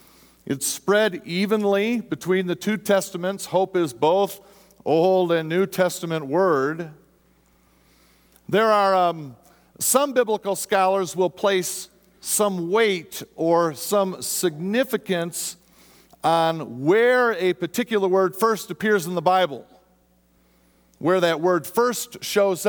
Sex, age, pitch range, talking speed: male, 50-69, 135-195 Hz, 115 wpm